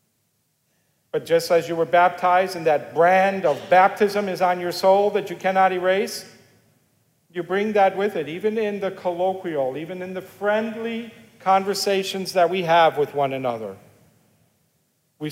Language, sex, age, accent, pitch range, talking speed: English, male, 50-69, American, 165-195 Hz, 155 wpm